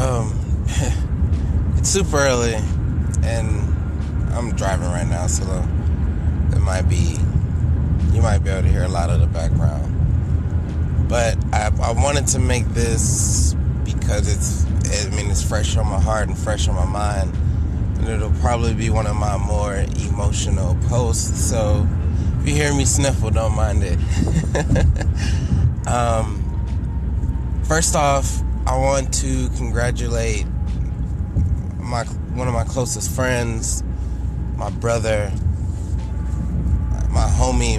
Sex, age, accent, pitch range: male, 20-39, American, 85-105 Hz